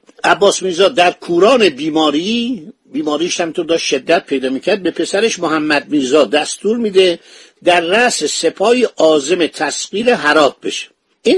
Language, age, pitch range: Persian, 50-69, 165-230 Hz